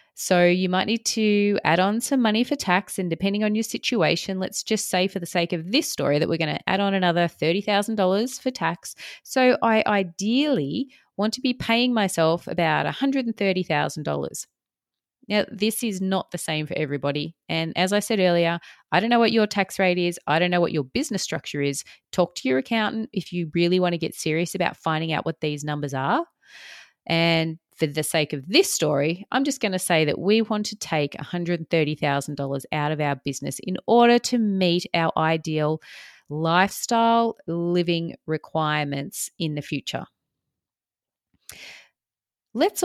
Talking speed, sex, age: 180 wpm, female, 30-49